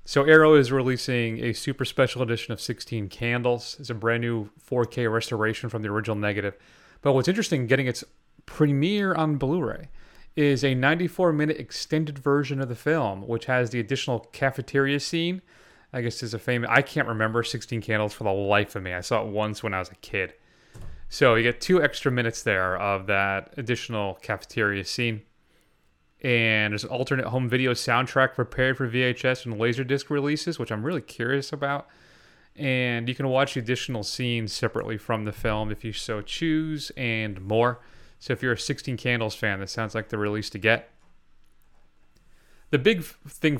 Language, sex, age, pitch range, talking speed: English, male, 30-49, 110-140 Hz, 180 wpm